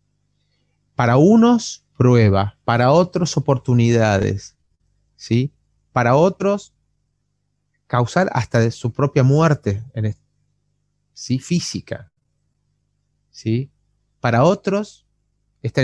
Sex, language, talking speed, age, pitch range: male, Spanish, 85 wpm, 30-49, 115-155 Hz